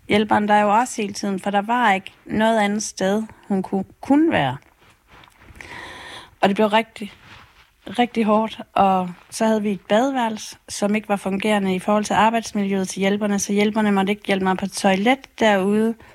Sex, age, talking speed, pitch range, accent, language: female, 30-49, 180 wpm, 195-220 Hz, native, Danish